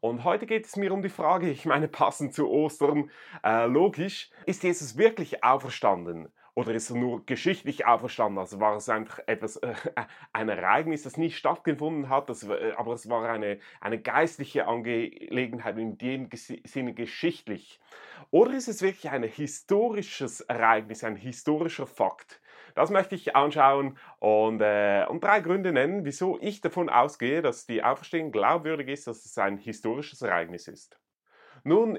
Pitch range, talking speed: 120-170 Hz, 160 wpm